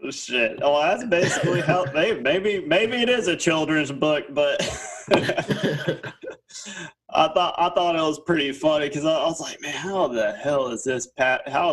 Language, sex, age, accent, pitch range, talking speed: English, male, 20-39, American, 110-135 Hz, 170 wpm